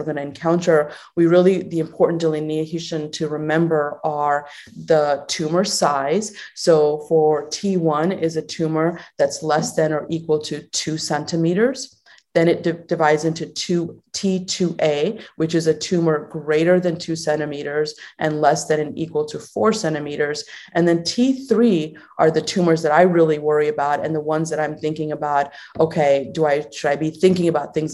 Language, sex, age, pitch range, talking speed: English, female, 30-49, 150-165 Hz, 165 wpm